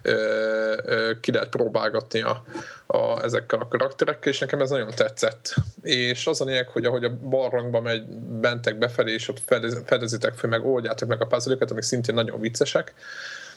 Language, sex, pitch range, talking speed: Hungarian, male, 115-135 Hz, 165 wpm